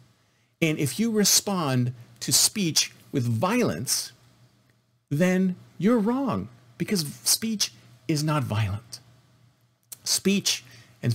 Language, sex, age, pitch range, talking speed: English, male, 50-69, 120-185 Hz, 95 wpm